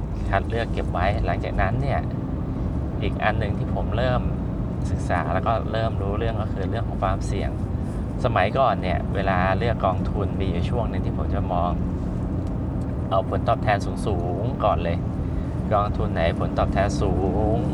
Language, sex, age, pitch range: Thai, male, 20-39, 90-100 Hz